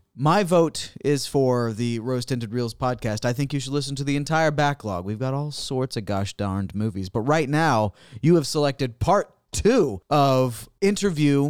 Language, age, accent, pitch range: English, 30-49, American, 120-170 Hz